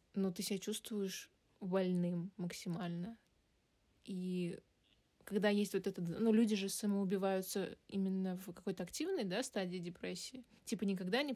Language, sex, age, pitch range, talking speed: Russian, female, 20-39, 185-220 Hz, 135 wpm